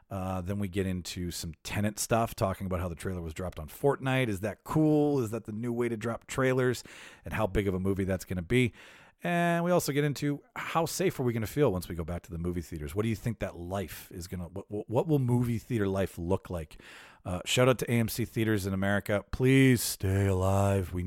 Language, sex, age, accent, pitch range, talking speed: English, male, 40-59, American, 95-130 Hz, 245 wpm